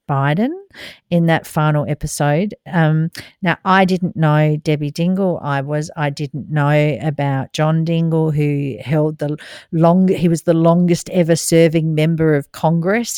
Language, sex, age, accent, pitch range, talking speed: English, female, 50-69, Australian, 150-175 Hz, 150 wpm